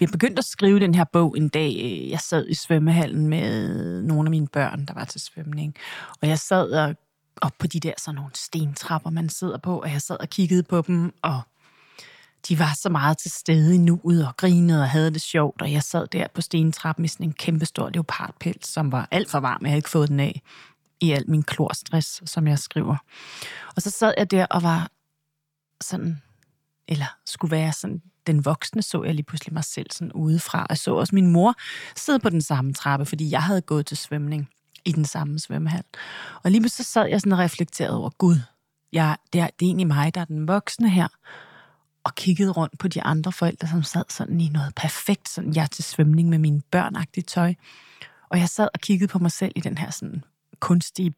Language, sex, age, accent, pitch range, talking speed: Danish, female, 30-49, native, 150-175 Hz, 215 wpm